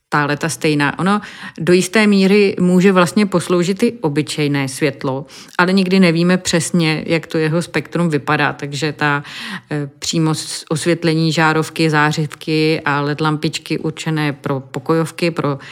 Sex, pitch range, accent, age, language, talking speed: female, 145-165 Hz, native, 30-49, Czech, 135 wpm